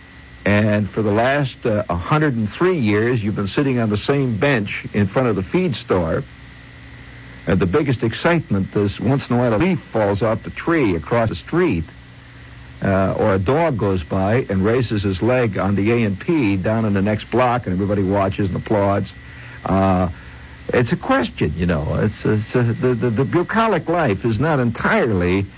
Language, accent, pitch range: English, American, 95-130 Hz